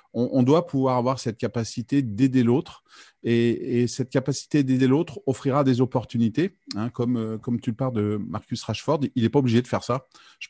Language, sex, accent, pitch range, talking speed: French, male, French, 105-125 Hz, 195 wpm